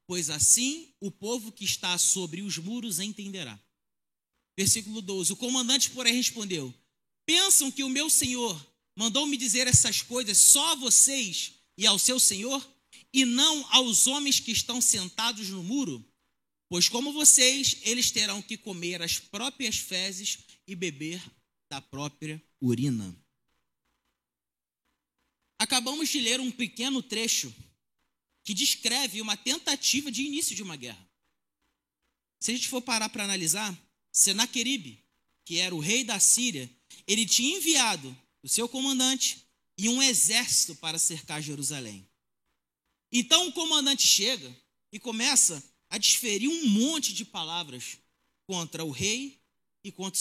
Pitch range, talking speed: 170-255 Hz, 135 wpm